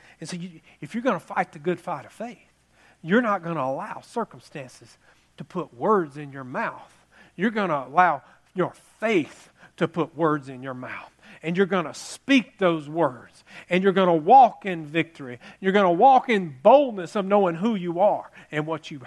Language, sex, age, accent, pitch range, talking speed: English, male, 40-59, American, 145-190 Hz, 200 wpm